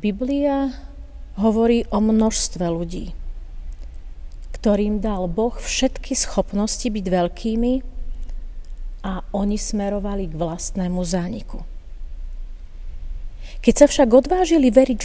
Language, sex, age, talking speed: Slovak, female, 40-59, 90 wpm